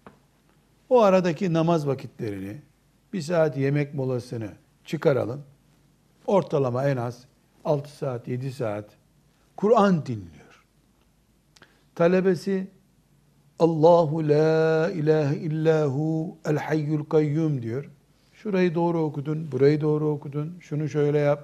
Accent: native